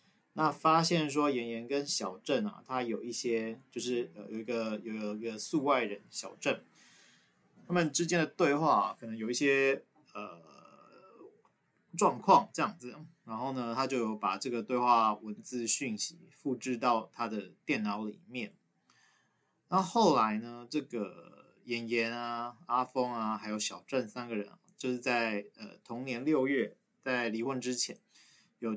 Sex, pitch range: male, 110-135 Hz